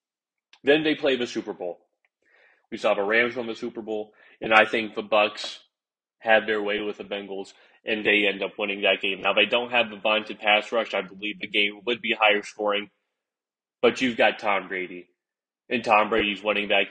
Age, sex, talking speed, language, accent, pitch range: 20-39, male, 210 wpm, English, American, 105-115 Hz